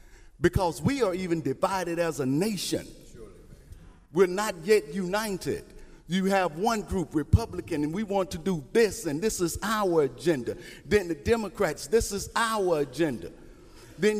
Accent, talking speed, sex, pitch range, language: American, 150 wpm, male, 160-205 Hz, English